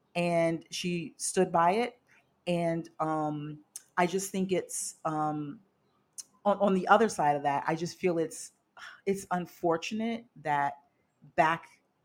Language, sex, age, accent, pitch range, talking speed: English, female, 40-59, American, 145-180 Hz, 135 wpm